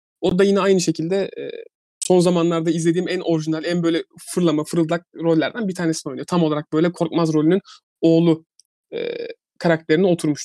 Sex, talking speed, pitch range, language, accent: male, 160 wpm, 160-200 Hz, Turkish, native